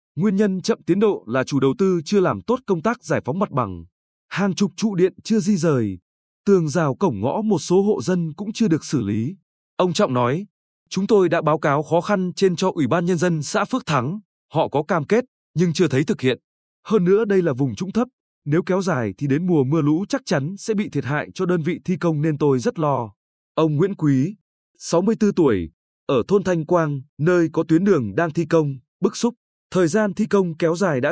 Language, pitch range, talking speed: Vietnamese, 145-200 Hz, 235 wpm